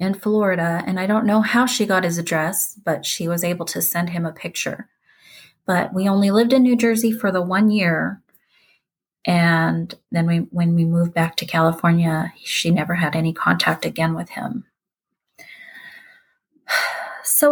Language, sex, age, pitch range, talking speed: English, female, 30-49, 165-215 Hz, 170 wpm